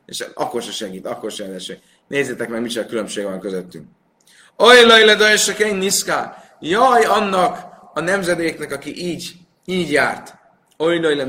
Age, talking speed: 30-49, 135 wpm